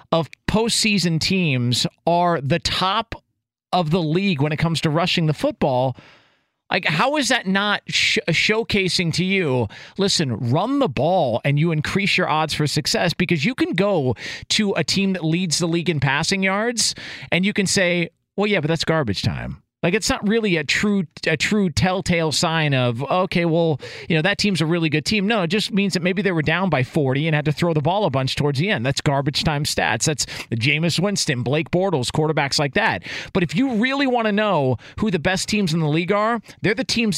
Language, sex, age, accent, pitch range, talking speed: English, male, 40-59, American, 155-195 Hz, 215 wpm